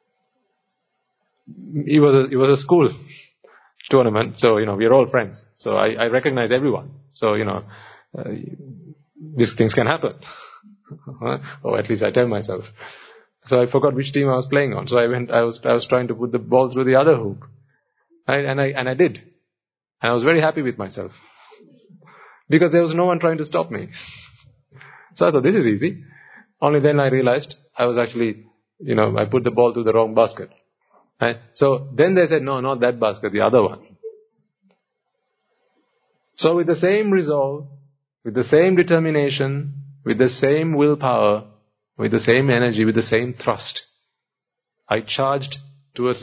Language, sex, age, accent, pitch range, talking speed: English, male, 30-49, Indian, 120-155 Hz, 180 wpm